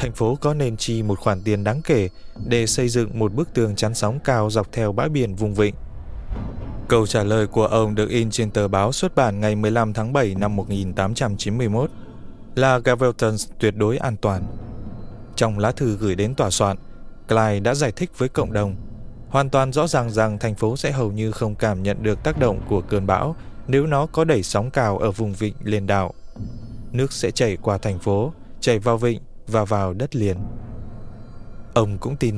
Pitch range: 105-125 Hz